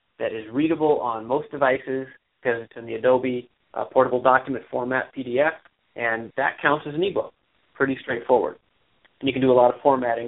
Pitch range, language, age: 120-140 Hz, English, 30-49